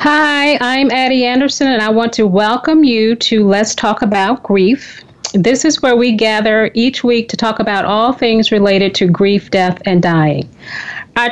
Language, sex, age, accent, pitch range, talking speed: English, female, 40-59, American, 205-250 Hz, 180 wpm